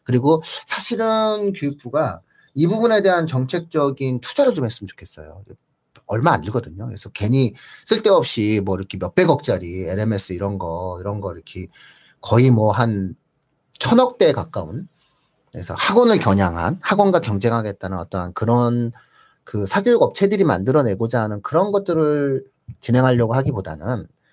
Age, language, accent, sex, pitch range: 40-59, Korean, native, male, 105-165 Hz